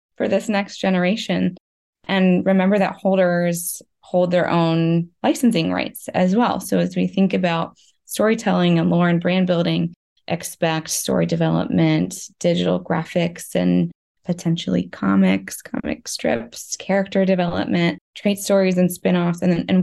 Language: English